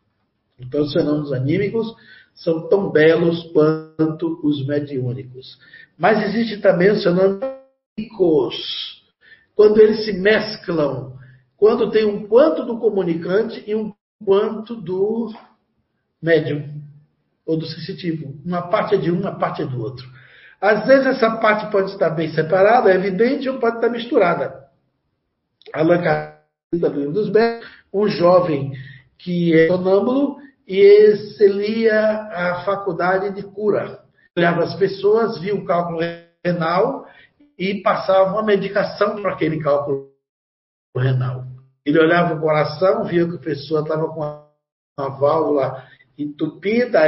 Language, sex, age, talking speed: Portuguese, male, 60-79, 130 wpm